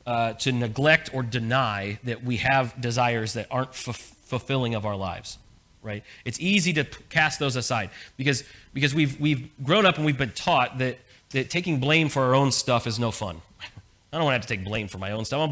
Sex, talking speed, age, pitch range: male, 230 wpm, 30-49, 115-150 Hz